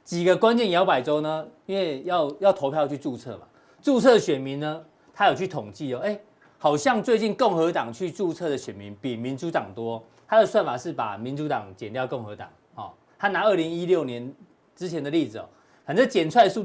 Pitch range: 125-185 Hz